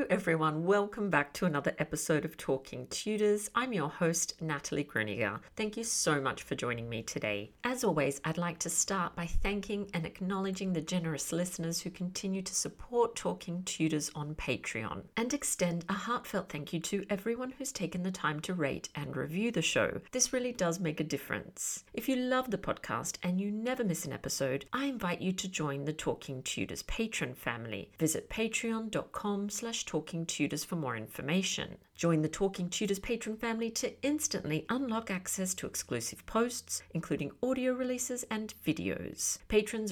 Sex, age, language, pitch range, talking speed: female, 50-69, English, 155-225 Hz, 170 wpm